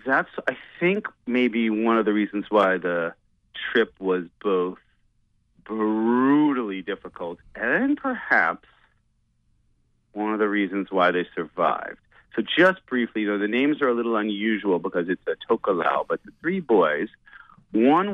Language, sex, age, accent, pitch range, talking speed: English, male, 40-59, American, 100-120 Hz, 145 wpm